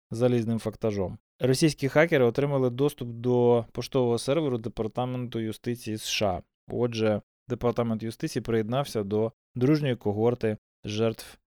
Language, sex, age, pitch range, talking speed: Ukrainian, male, 20-39, 110-135 Hz, 105 wpm